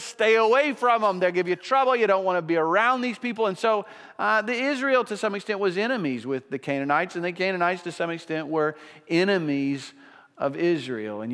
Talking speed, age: 210 wpm, 40-59